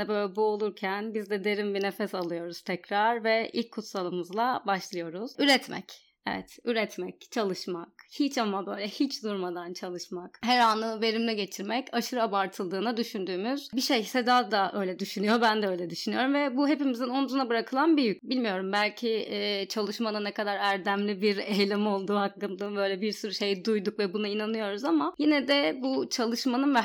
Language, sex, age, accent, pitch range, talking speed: Turkish, female, 30-49, native, 200-245 Hz, 165 wpm